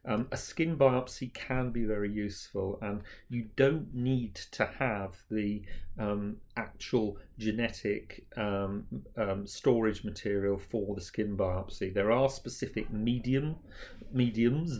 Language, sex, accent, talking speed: English, male, British, 125 wpm